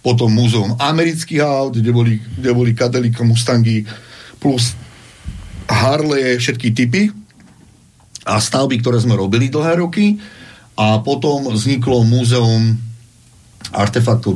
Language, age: Slovak, 50-69